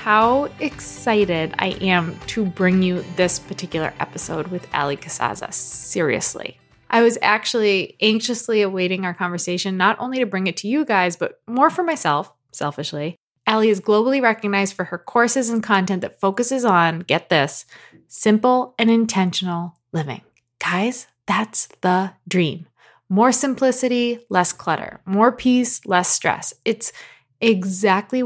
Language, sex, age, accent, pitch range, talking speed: English, female, 20-39, American, 180-230 Hz, 140 wpm